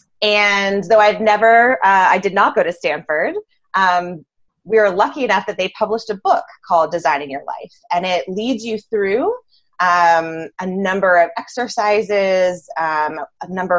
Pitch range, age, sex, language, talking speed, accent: 160-205 Hz, 20-39, female, English, 165 wpm, American